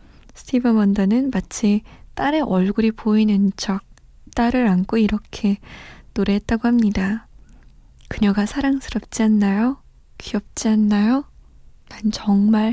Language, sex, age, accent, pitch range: Korean, female, 20-39, native, 195-240 Hz